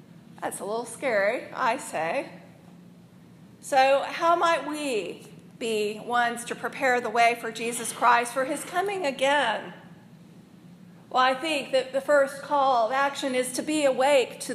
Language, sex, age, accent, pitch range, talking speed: English, female, 40-59, American, 195-265 Hz, 155 wpm